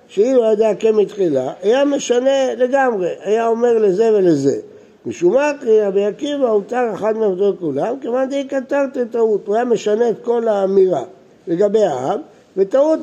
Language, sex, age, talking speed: Hebrew, male, 60-79, 150 wpm